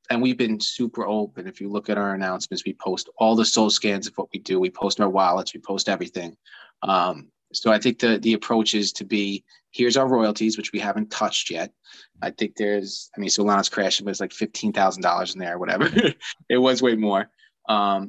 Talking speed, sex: 220 wpm, male